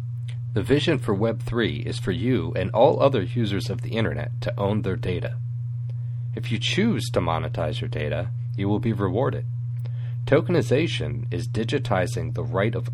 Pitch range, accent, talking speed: 115-120 Hz, American, 160 wpm